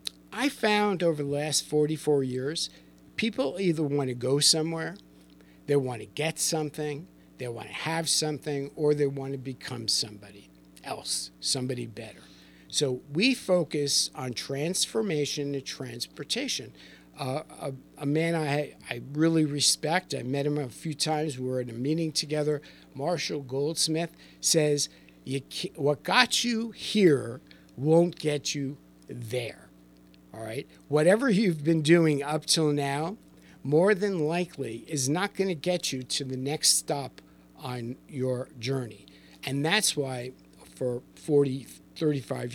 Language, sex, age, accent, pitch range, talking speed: English, male, 50-69, American, 125-155 Hz, 145 wpm